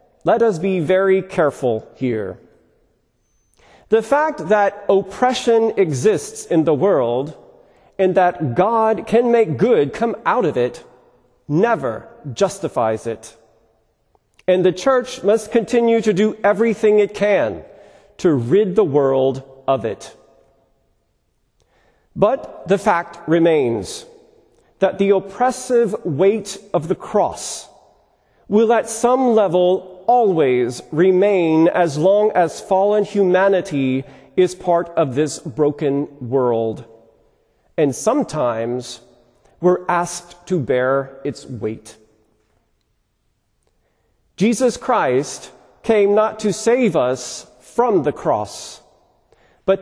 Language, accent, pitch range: English, American, 135-215 Hz